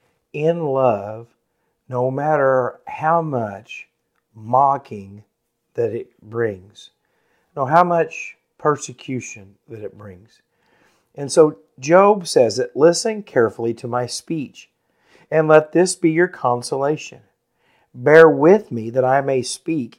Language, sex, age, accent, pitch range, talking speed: English, male, 50-69, American, 115-150 Hz, 120 wpm